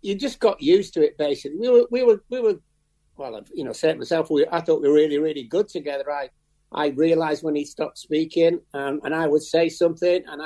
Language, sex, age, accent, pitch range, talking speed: English, male, 60-79, British, 150-190 Hz, 240 wpm